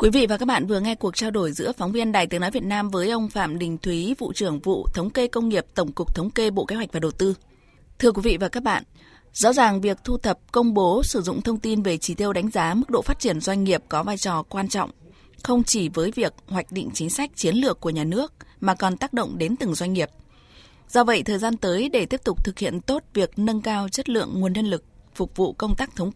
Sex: female